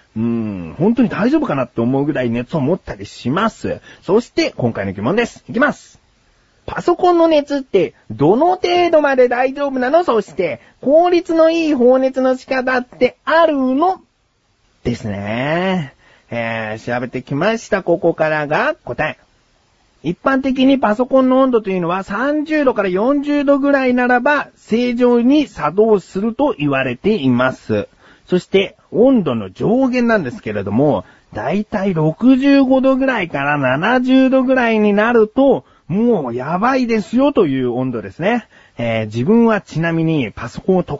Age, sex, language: 40-59, male, Japanese